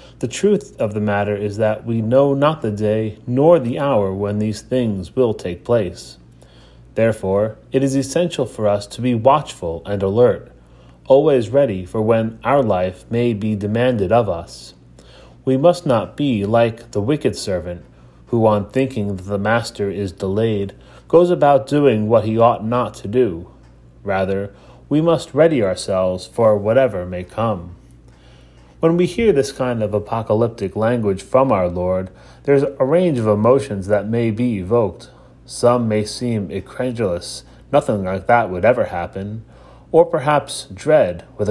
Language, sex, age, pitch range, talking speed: English, male, 30-49, 100-130 Hz, 160 wpm